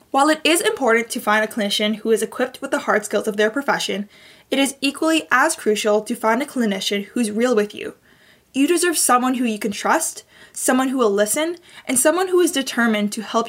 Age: 10-29